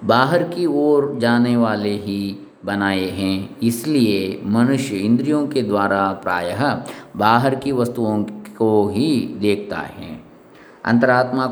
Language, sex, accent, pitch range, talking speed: English, male, Indian, 100-120 Hz, 115 wpm